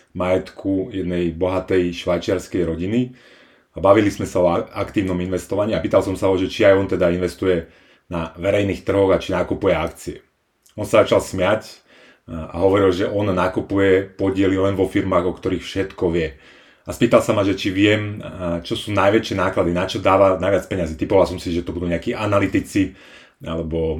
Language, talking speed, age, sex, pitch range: Slovak, 180 wpm, 30-49, male, 90-105 Hz